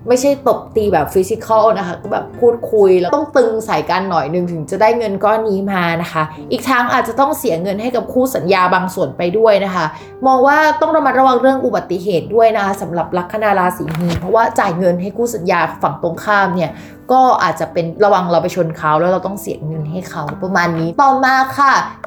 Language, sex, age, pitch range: Thai, female, 20-39, 175-240 Hz